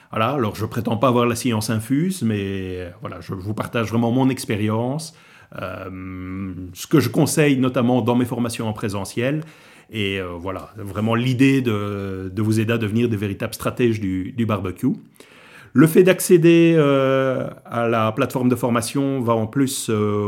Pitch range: 100-125 Hz